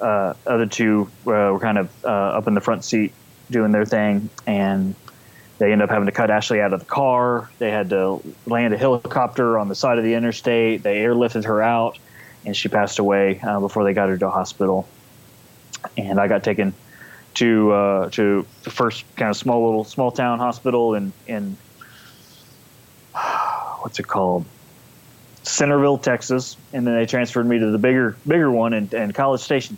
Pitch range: 100-120 Hz